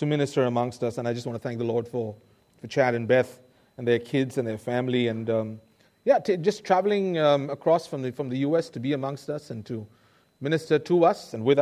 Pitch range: 130-175 Hz